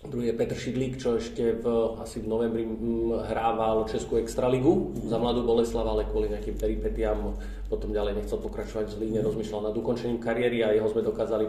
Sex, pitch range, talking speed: male, 110-120 Hz, 190 wpm